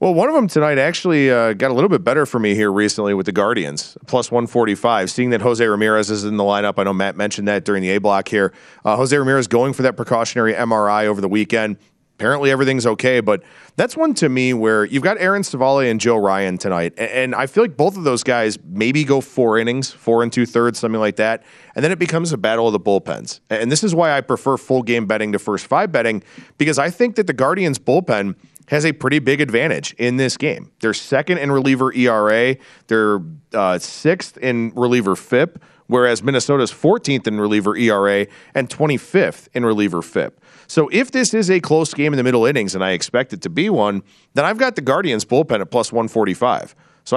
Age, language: 40-59, English